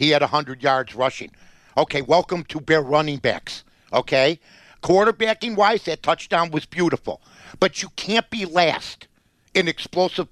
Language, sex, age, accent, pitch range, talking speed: English, male, 60-79, American, 145-190 Hz, 140 wpm